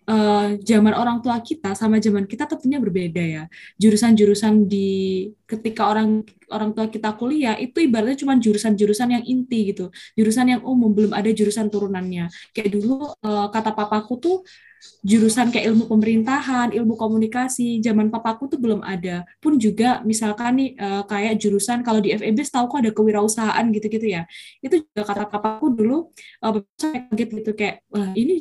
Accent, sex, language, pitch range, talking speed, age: native, female, Indonesian, 205-240 Hz, 150 wpm, 20-39